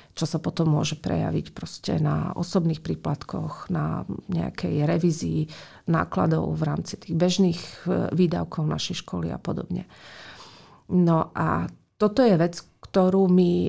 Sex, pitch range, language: female, 165-185 Hz, Slovak